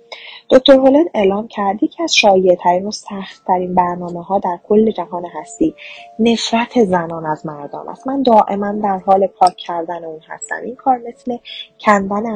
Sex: female